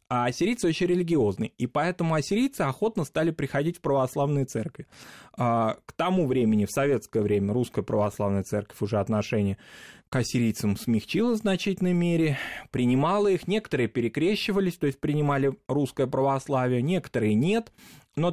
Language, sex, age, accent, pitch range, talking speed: Russian, male, 20-39, native, 120-175 Hz, 140 wpm